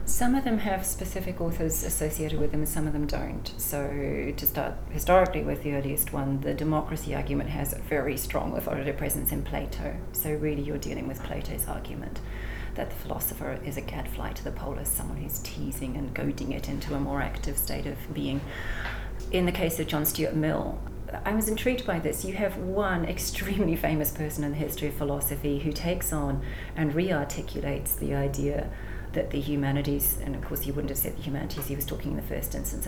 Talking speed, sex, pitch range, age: 205 wpm, female, 130-155 Hz, 30-49